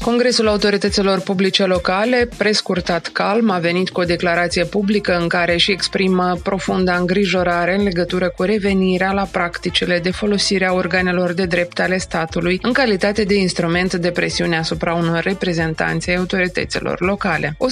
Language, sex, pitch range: Romanian, female, 170-200 Hz